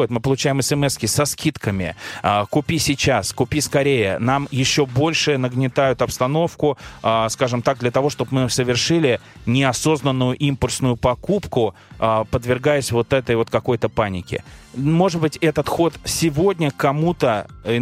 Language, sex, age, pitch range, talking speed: Russian, male, 20-39, 120-145 Hz, 125 wpm